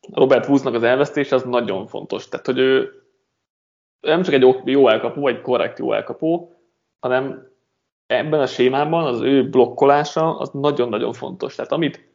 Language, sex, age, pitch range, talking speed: Hungarian, male, 20-39, 120-160 Hz, 155 wpm